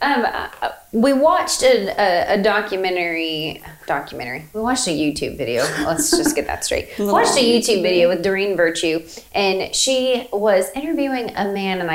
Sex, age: female, 30-49